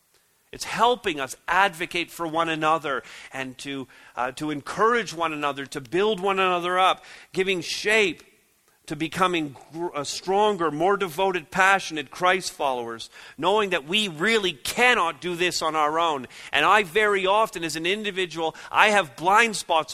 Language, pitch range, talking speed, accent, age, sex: English, 150-200 Hz, 155 wpm, American, 40-59, male